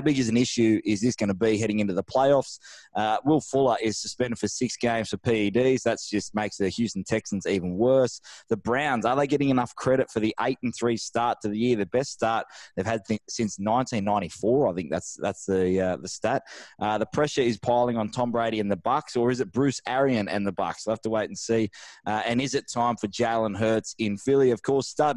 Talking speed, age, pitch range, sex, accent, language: 240 wpm, 20-39, 105-130 Hz, male, Australian, English